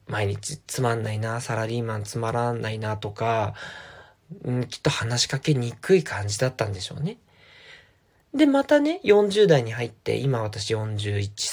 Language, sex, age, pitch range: Japanese, male, 20-39, 115-195 Hz